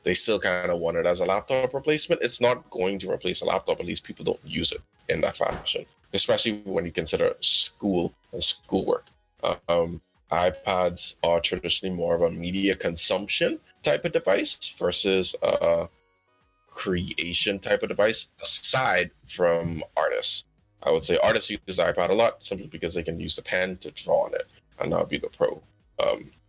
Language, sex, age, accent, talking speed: English, male, 20-39, American, 185 wpm